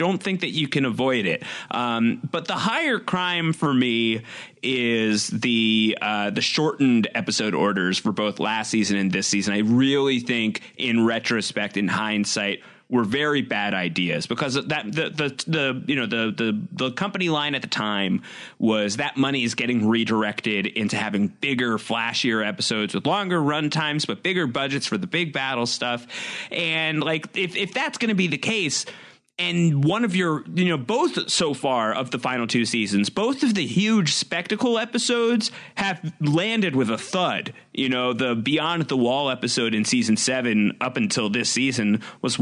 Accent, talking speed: American, 180 wpm